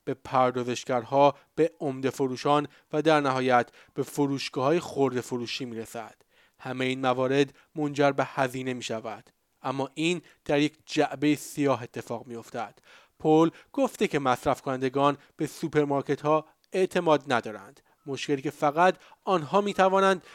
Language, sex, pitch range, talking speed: Persian, male, 135-165 Hz, 140 wpm